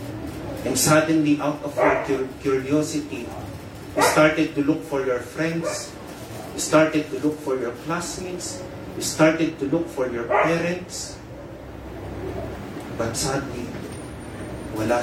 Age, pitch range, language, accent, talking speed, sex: 30-49, 115-150 Hz, Filipino, native, 120 wpm, male